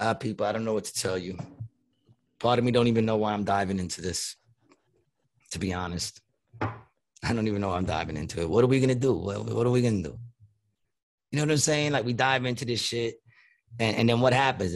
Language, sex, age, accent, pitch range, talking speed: English, male, 30-49, American, 100-120 Hz, 245 wpm